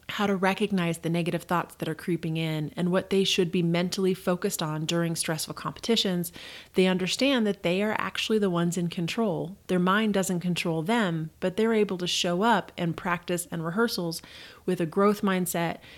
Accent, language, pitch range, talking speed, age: American, English, 165-200 Hz, 190 wpm, 30-49